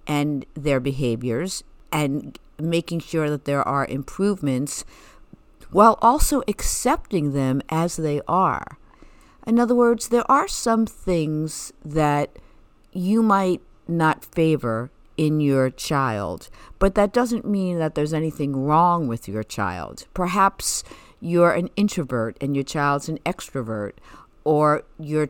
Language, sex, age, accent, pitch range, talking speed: English, female, 50-69, American, 135-185 Hz, 130 wpm